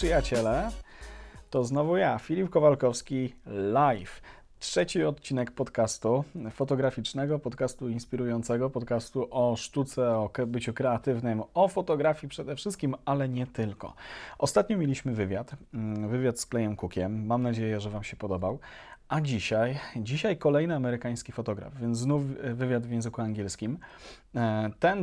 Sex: male